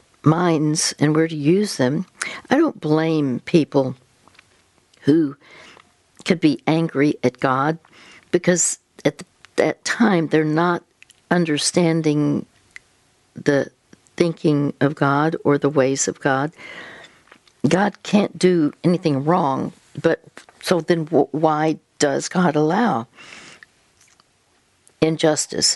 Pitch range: 145-170 Hz